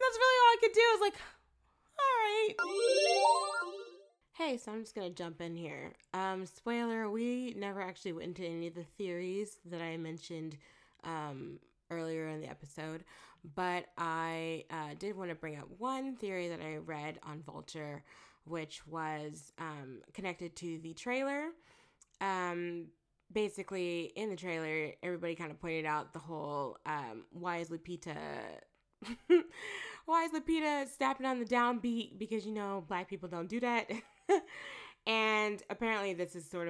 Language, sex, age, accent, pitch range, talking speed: English, female, 20-39, American, 160-225 Hz, 160 wpm